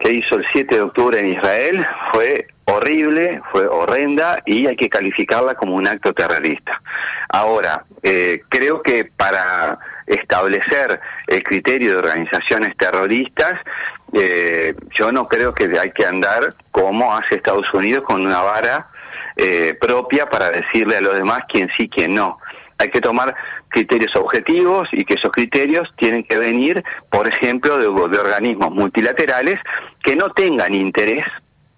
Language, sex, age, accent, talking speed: Spanish, male, 40-59, Argentinian, 150 wpm